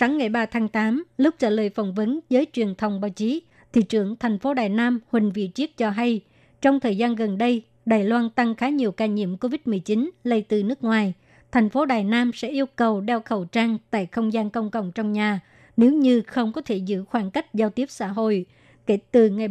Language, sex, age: Vietnamese, male, 60-79